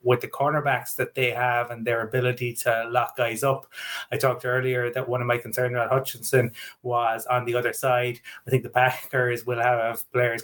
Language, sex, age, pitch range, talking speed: English, male, 20-39, 120-130 Hz, 200 wpm